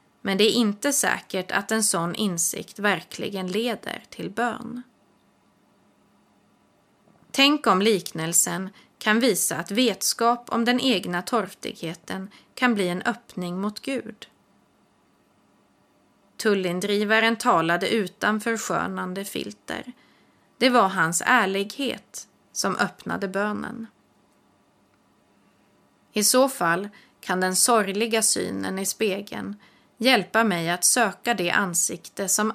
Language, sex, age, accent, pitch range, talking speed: Swedish, female, 30-49, native, 185-235 Hz, 105 wpm